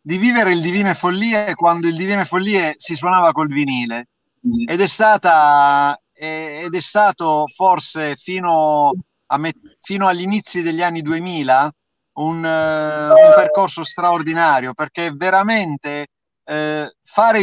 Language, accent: Italian, native